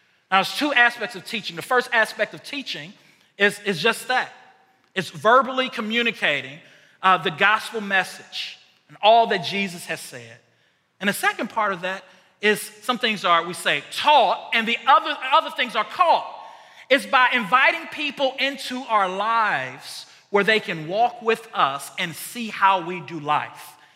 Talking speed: 170 wpm